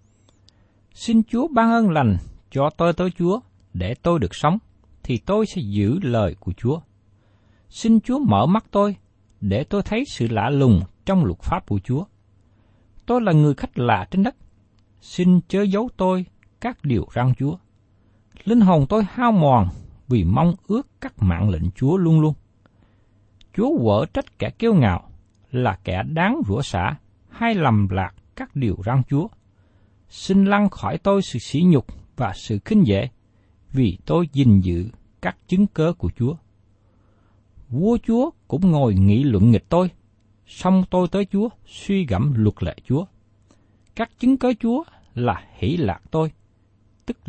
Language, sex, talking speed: Vietnamese, male, 165 wpm